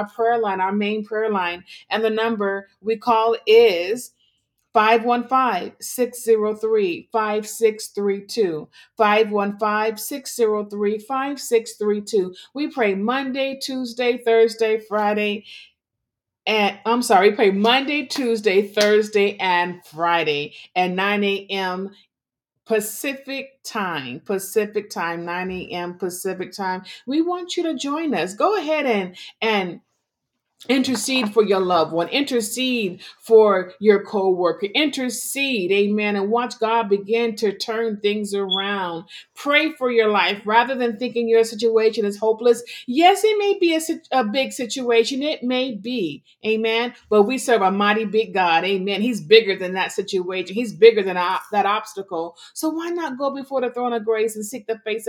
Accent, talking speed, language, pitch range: American, 140 wpm, English, 200-245 Hz